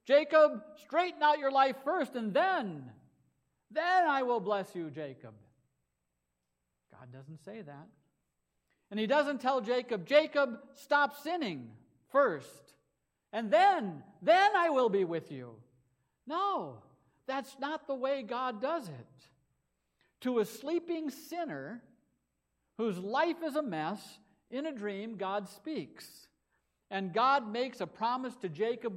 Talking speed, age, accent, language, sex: 135 wpm, 60-79, American, English, male